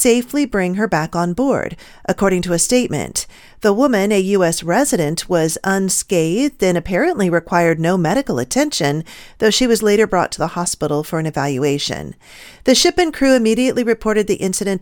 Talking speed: 170 wpm